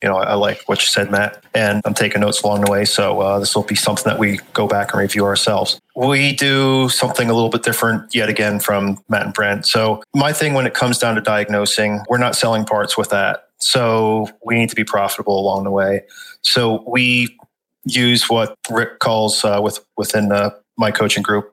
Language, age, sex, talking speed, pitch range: English, 30-49, male, 215 wpm, 105-120 Hz